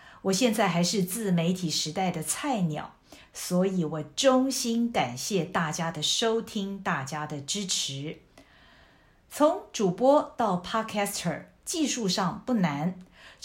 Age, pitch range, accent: 50-69, 175-230 Hz, native